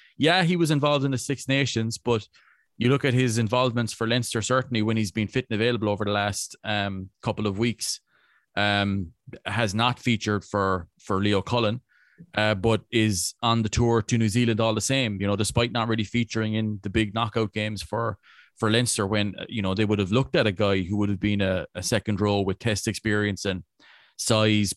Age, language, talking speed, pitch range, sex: 20-39, English, 210 wpm, 100-115 Hz, male